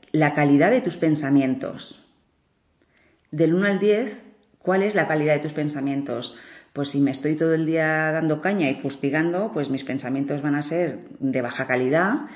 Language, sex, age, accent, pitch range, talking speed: Spanish, female, 40-59, Spanish, 145-180 Hz, 175 wpm